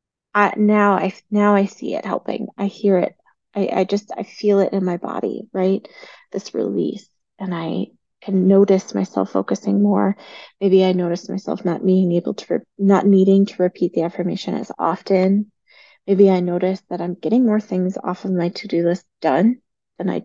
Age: 20-39